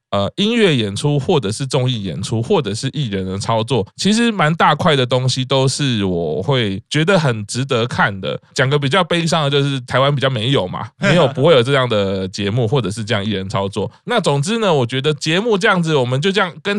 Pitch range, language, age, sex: 110-155 Hz, Chinese, 20-39, male